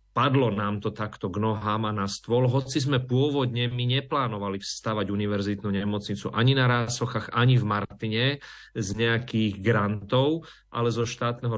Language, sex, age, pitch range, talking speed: Slovak, male, 40-59, 110-130 Hz, 145 wpm